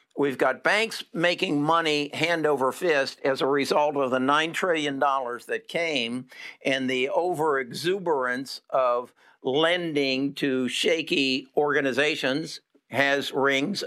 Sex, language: male, English